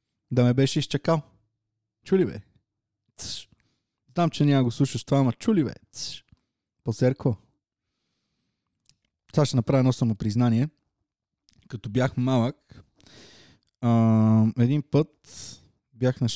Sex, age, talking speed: male, 20-39, 110 wpm